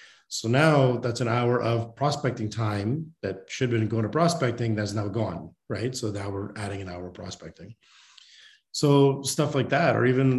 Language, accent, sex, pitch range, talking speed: English, American, male, 110-135 Hz, 190 wpm